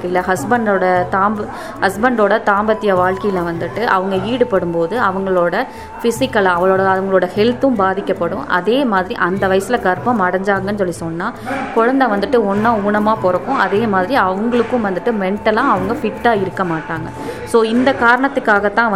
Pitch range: 185-230 Hz